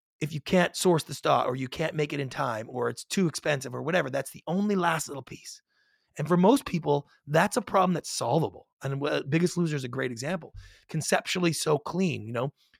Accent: American